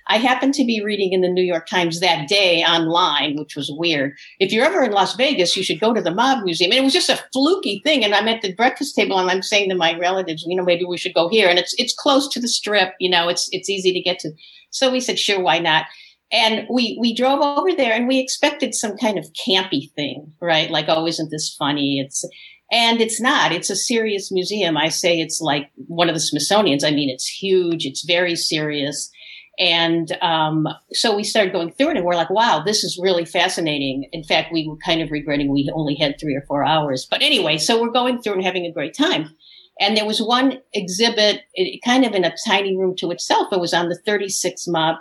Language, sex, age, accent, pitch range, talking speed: English, female, 50-69, American, 160-215 Hz, 240 wpm